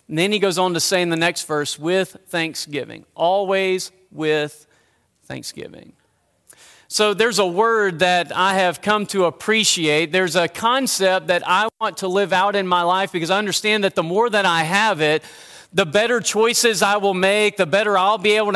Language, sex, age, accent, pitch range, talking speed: English, male, 40-59, American, 175-205 Hz, 190 wpm